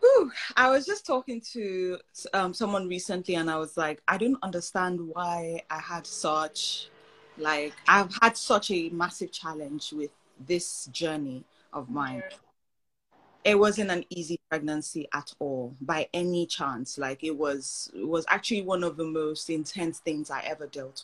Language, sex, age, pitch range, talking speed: English, female, 20-39, 160-200 Hz, 165 wpm